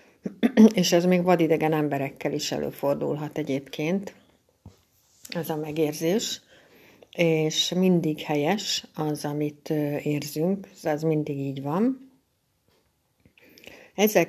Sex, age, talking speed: female, 60-79, 95 wpm